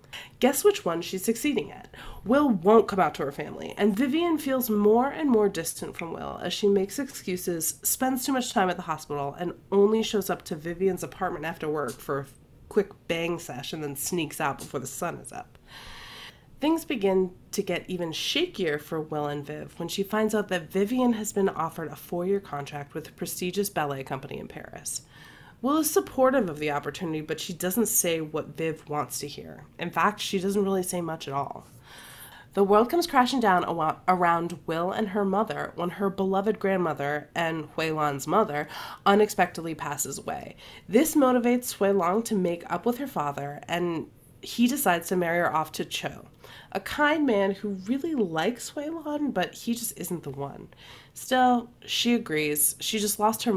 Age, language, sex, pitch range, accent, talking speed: 30-49, English, female, 155-215 Hz, American, 190 wpm